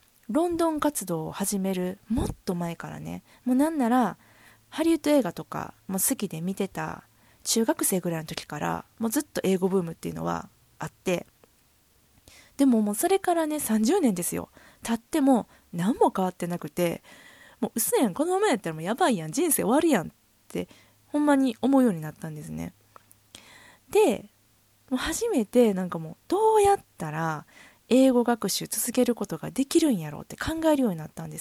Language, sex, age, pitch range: Japanese, female, 20-39, 165-260 Hz